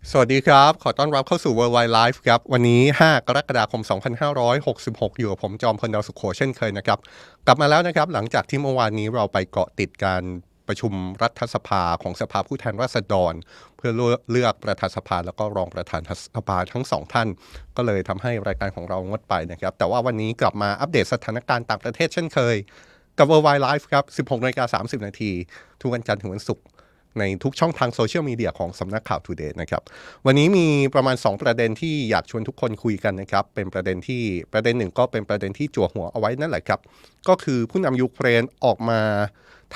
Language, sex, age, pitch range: Thai, male, 30-49, 100-130 Hz